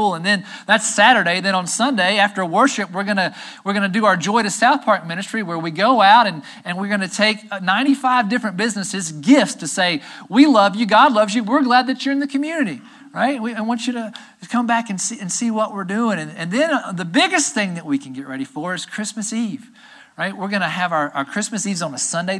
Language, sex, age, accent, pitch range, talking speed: English, male, 40-59, American, 175-240 Hz, 250 wpm